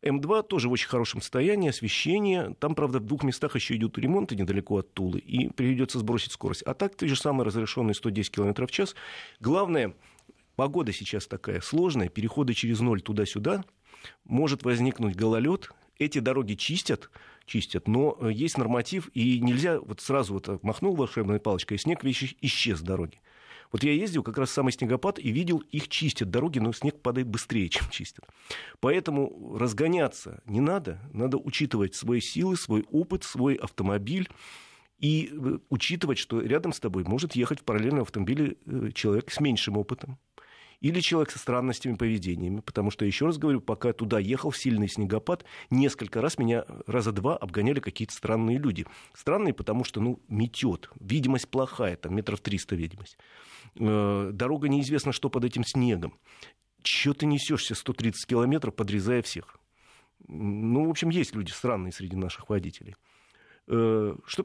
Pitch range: 105-140 Hz